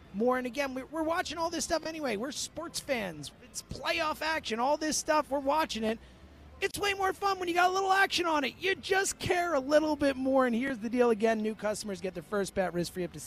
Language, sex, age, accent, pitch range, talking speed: English, male, 30-49, American, 190-265 Hz, 250 wpm